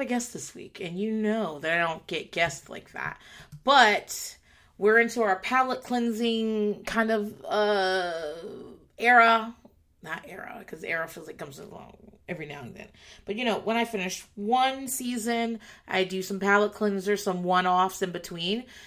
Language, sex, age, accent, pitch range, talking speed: English, female, 30-49, American, 180-235 Hz, 170 wpm